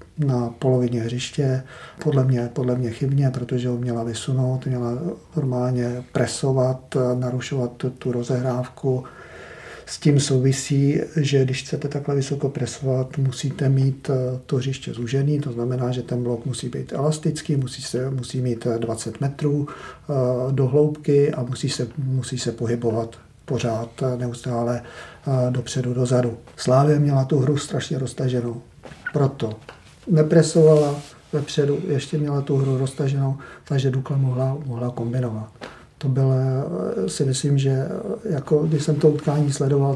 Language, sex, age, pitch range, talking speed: Czech, male, 50-69, 125-145 Hz, 130 wpm